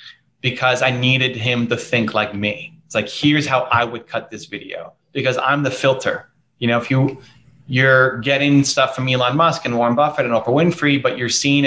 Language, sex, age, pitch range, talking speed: English, male, 30-49, 120-140 Hz, 210 wpm